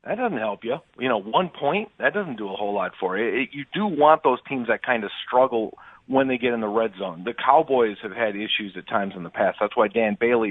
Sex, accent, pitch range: male, American, 100-120 Hz